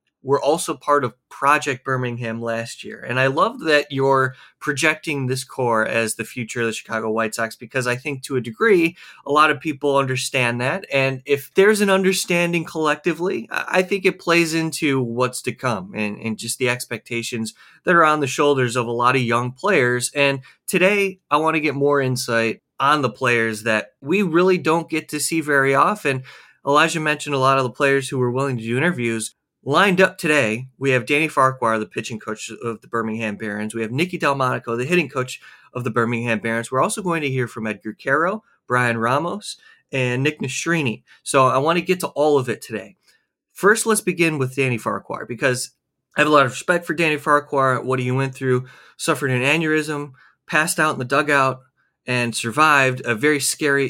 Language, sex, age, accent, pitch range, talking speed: English, male, 20-39, American, 120-155 Hz, 200 wpm